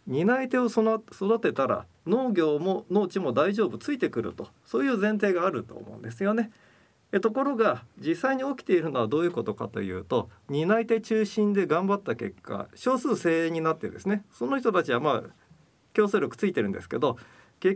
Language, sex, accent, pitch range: Japanese, male, native, 145-225 Hz